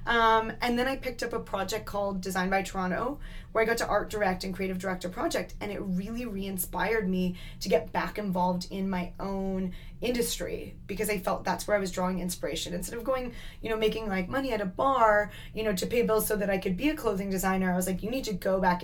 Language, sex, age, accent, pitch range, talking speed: English, female, 20-39, American, 185-220 Hz, 240 wpm